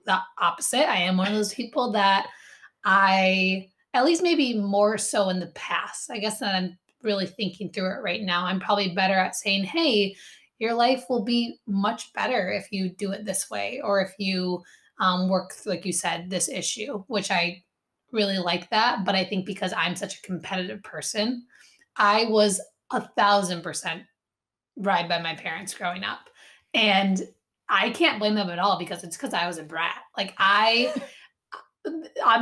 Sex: female